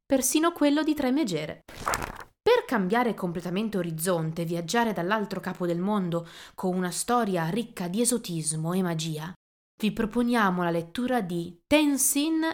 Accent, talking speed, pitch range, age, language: native, 140 wpm, 170-235 Hz, 20-39, Italian